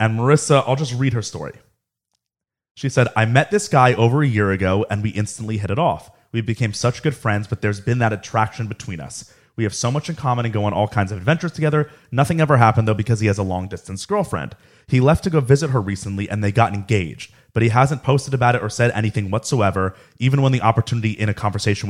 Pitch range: 105-135 Hz